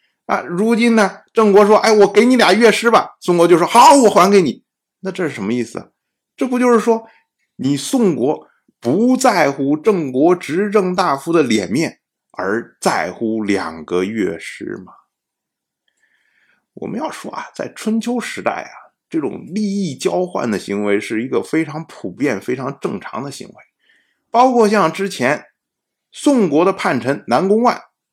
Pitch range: 170-245 Hz